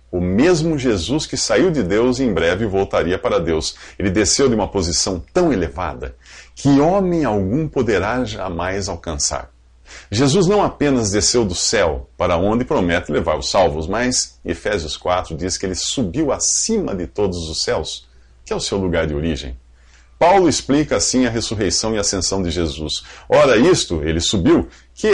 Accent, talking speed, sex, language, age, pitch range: Brazilian, 170 wpm, male, English, 50-69, 80-125 Hz